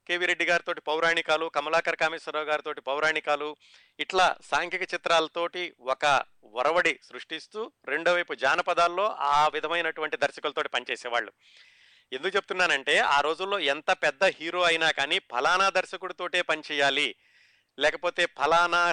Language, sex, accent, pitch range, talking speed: Telugu, male, native, 140-175 Hz, 105 wpm